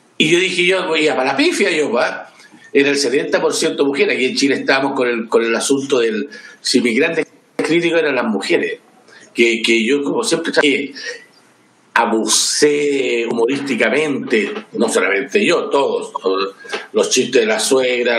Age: 50-69